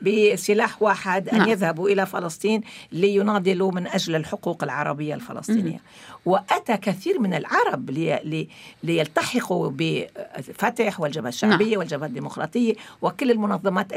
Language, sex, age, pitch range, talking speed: Arabic, female, 50-69, 155-215 Hz, 110 wpm